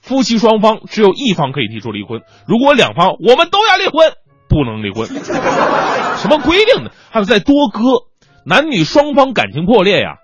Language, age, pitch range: Chinese, 20-39, 125-190 Hz